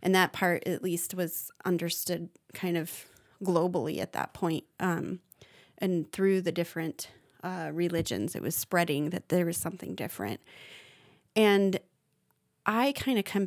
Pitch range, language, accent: 170-200 Hz, English, American